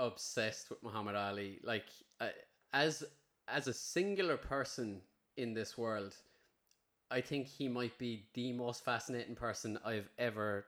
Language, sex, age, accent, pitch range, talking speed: English, male, 20-39, Irish, 105-120 Hz, 140 wpm